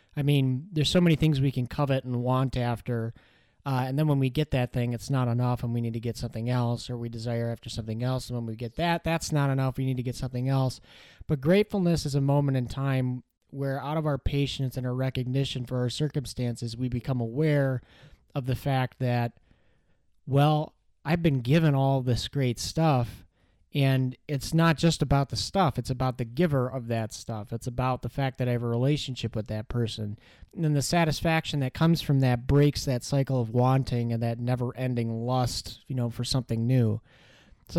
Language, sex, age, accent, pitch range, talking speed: English, male, 30-49, American, 120-140 Hz, 210 wpm